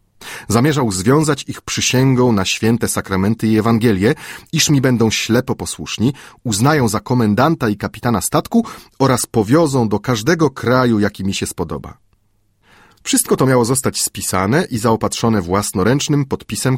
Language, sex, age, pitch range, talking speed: Polish, male, 30-49, 100-130 Hz, 135 wpm